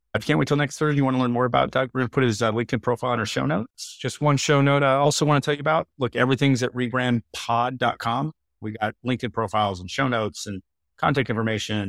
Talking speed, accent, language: 255 wpm, American, English